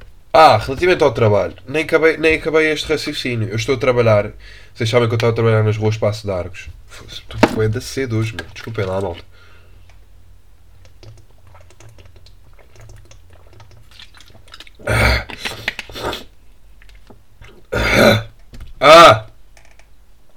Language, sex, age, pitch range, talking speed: Portuguese, male, 20-39, 100-125 Hz, 120 wpm